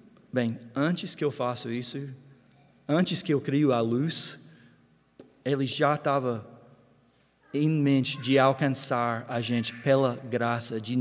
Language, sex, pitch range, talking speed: Portuguese, male, 125-185 Hz, 130 wpm